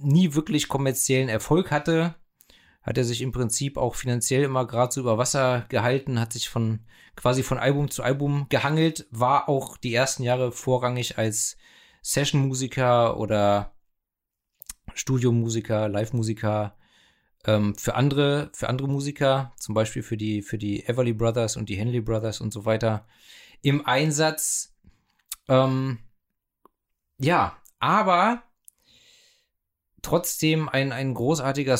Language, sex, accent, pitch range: German, male, German, 110-135 Hz